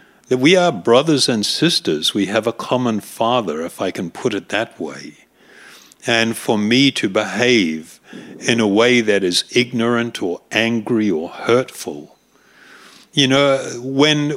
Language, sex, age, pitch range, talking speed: English, male, 60-79, 105-140 Hz, 150 wpm